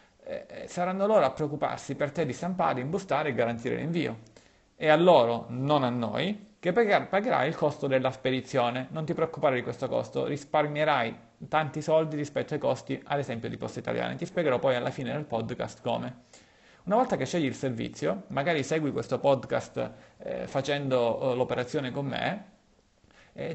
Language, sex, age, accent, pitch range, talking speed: Italian, male, 30-49, native, 120-155 Hz, 170 wpm